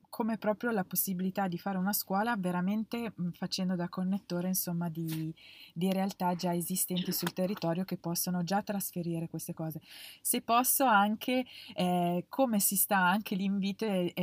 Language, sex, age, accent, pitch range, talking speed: Italian, female, 20-39, native, 175-200 Hz, 150 wpm